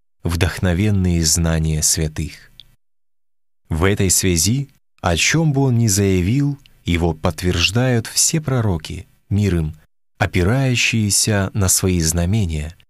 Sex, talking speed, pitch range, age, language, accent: male, 100 wpm, 90-125 Hz, 30-49, Russian, native